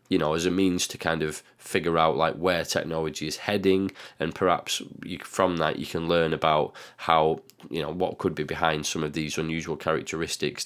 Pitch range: 80-90 Hz